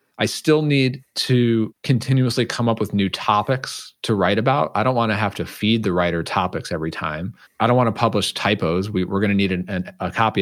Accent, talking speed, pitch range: American, 230 wpm, 95-120 Hz